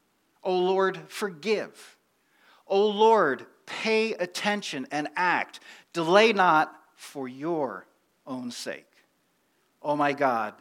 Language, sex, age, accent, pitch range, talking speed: English, male, 50-69, American, 130-185 Hz, 100 wpm